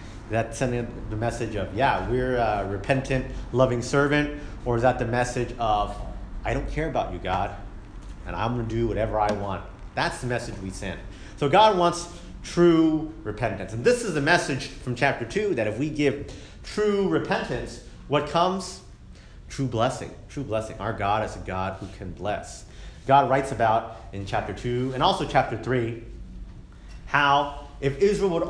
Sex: male